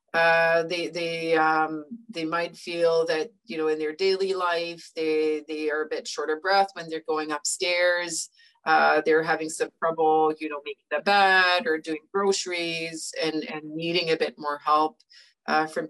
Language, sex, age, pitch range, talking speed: English, female, 40-59, 155-185 Hz, 180 wpm